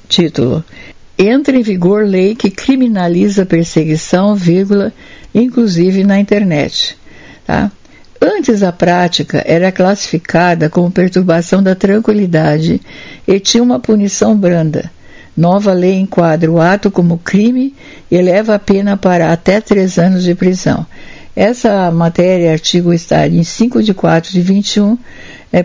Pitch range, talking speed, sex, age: 175-210 Hz, 130 wpm, female, 60-79